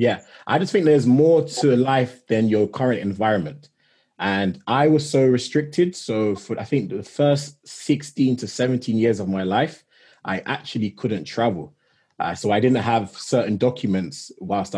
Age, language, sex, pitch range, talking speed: 20-39, English, male, 105-145 Hz, 170 wpm